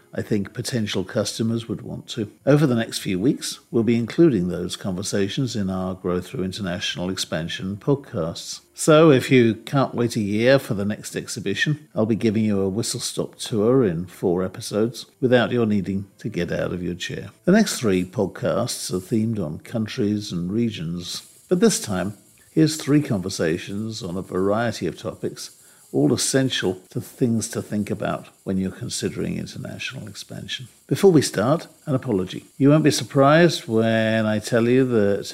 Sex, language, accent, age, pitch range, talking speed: male, English, British, 50-69, 100-125 Hz, 170 wpm